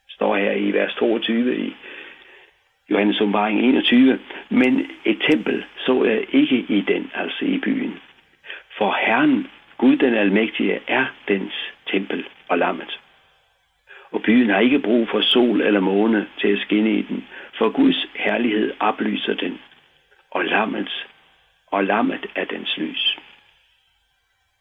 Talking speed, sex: 130 wpm, male